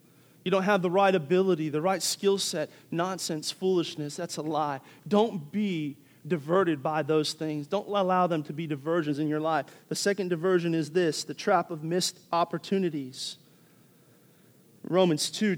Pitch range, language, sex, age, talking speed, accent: 160-195 Hz, English, male, 40-59, 160 wpm, American